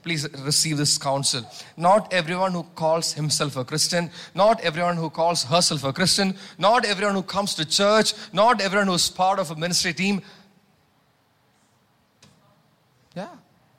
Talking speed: 145 wpm